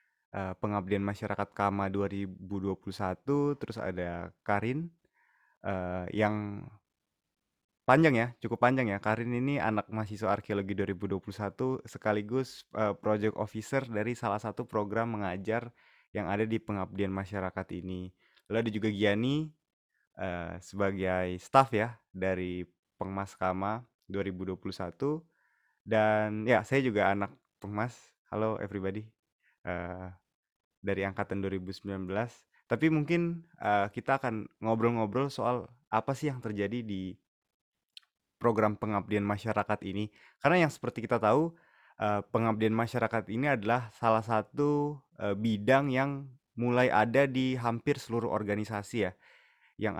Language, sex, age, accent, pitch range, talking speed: Indonesian, male, 20-39, native, 100-120 Hz, 120 wpm